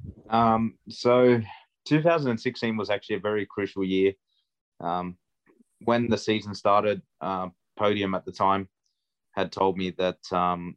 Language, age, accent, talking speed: English, 20-39, Australian, 140 wpm